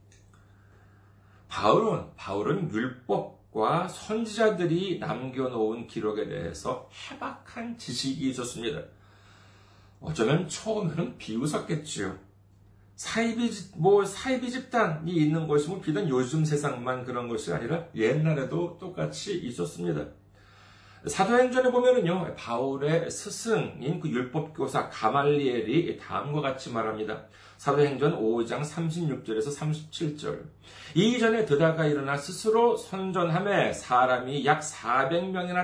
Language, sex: Korean, male